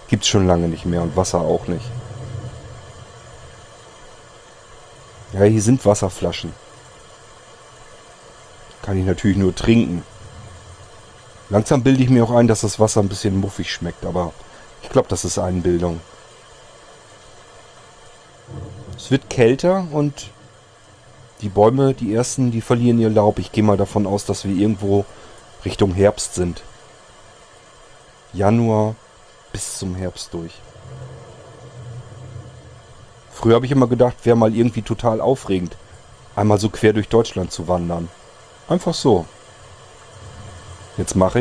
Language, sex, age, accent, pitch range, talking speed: German, male, 40-59, German, 95-120 Hz, 125 wpm